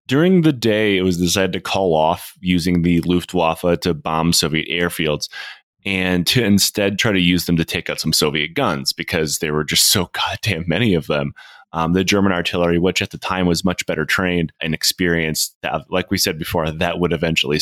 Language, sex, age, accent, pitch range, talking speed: English, male, 30-49, American, 85-100 Hz, 200 wpm